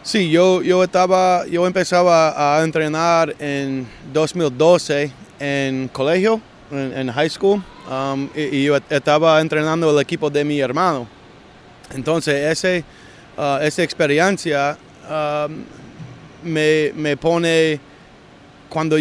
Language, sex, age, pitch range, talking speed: English, male, 20-39, 140-165 Hz, 105 wpm